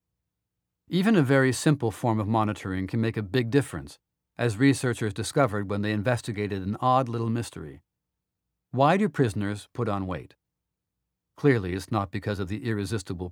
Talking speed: 160 wpm